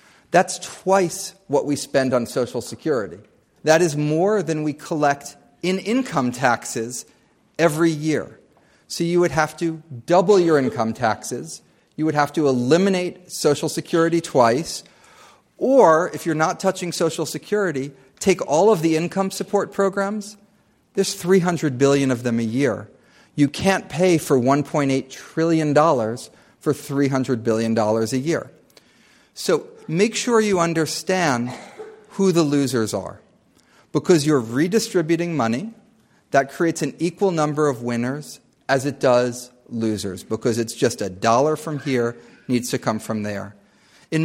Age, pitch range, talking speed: 40-59, 130-180 Hz, 140 wpm